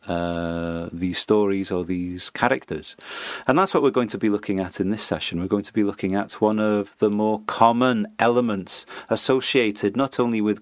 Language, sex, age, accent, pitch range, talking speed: English, male, 40-59, British, 95-120 Hz, 190 wpm